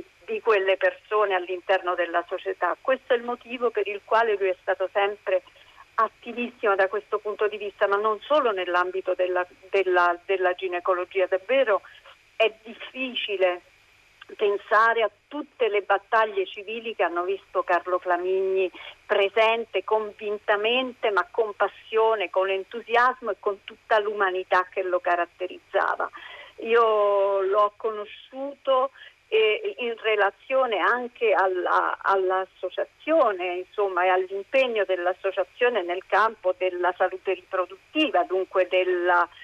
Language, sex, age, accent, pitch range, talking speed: Italian, female, 50-69, native, 185-225 Hz, 120 wpm